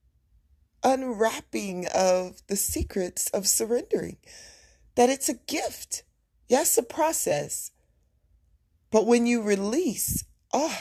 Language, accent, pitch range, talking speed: English, American, 170-255 Hz, 100 wpm